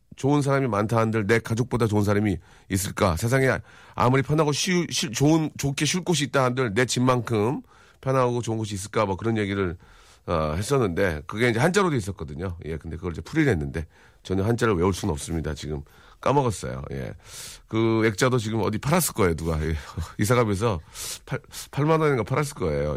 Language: Korean